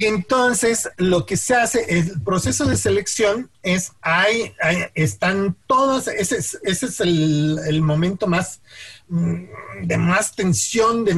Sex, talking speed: male, 135 wpm